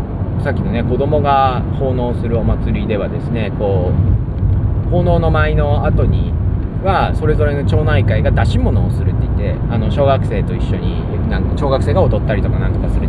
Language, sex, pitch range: Japanese, male, 95-115 Hz